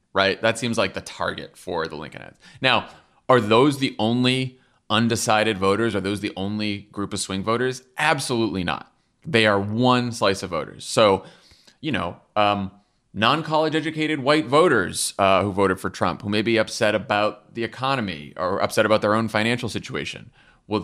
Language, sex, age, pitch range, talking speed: English, male, 30-49, 105-135 Hz, 175 wpm